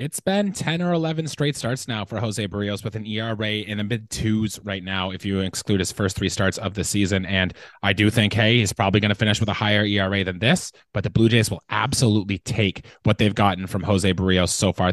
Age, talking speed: 30-49, 245 wpm